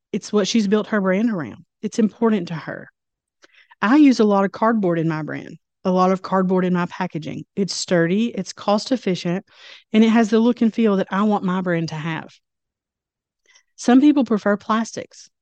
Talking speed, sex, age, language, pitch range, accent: 190 wpm, female, 30-49, English, 175-210 Hz, American